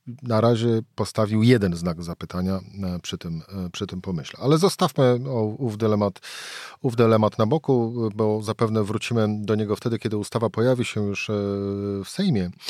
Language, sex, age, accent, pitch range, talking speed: Polish, male, 40-59, native, 100-125 Hz, 140 wpm